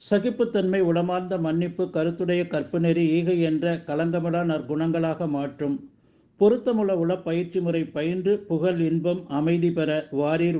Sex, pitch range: male, 150-175 Hz